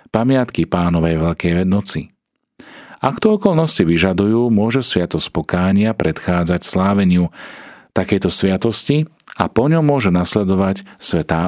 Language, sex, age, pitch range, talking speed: Slovak, male, 40-59, 85-115 Hz, 110 wpm